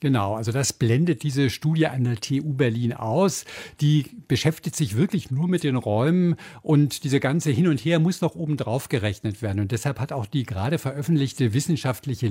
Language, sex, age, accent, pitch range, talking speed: German, male, 50-69, German, 120-155 Hz, 185 wpm